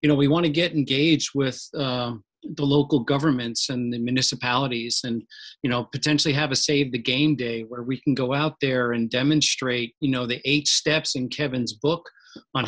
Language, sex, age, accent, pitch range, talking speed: English, male, 40-59, American, 130-150 Hz, 200 wpm